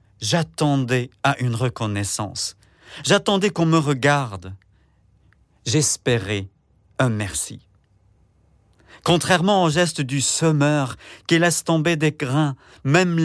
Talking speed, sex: 100 wpm, male